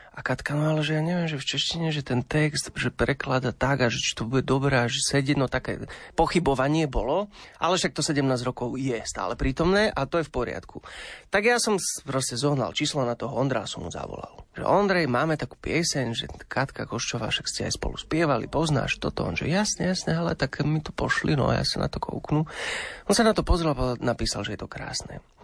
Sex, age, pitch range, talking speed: male, 30-49, 120-155 Hz, 220 wpm